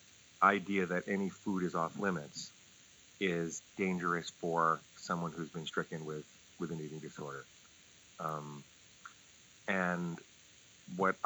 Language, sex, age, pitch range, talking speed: English, male, 40-59, 85-95 Hz, 115 wpm